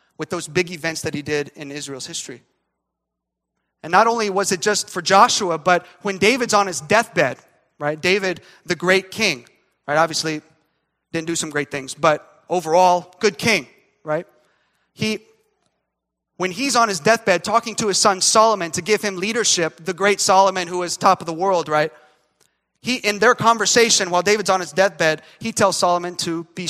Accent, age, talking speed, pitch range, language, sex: American, 30-49, 180 wpm, 160-205 Hz, English, male